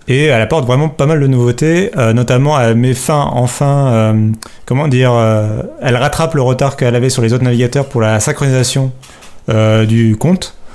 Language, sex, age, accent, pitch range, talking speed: French, male, 30-49, French, 115-135 Hz, 190 wpm